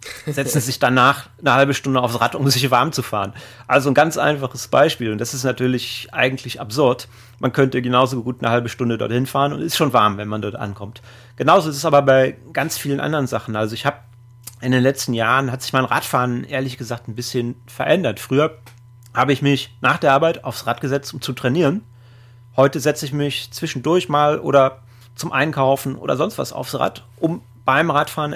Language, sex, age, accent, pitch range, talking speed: English, male, 30-49, German, 120-140 Hz, 205 wpm